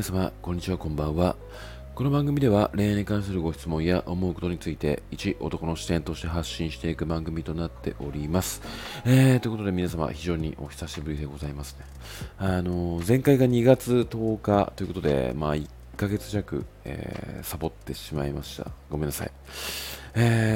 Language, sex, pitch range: Japanese, male, 70-95 Hz